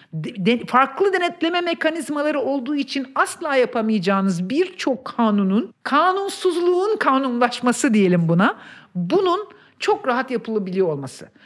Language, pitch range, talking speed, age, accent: Turkish, 190-295 Hz, 95 wpm, 50-69, native